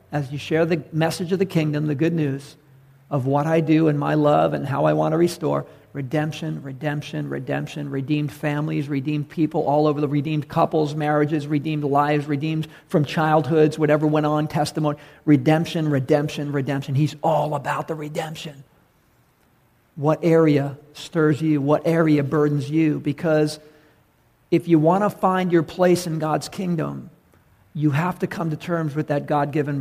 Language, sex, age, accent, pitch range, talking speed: English, male, 50-69, American, 145-170 Hz, 165 wpm